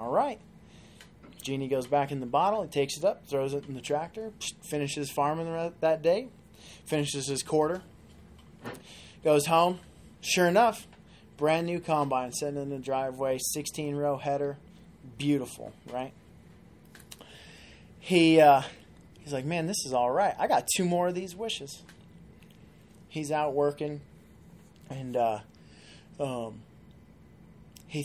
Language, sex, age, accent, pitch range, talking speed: English, male, 20-39, American, 125-155 Hz, 135 wpm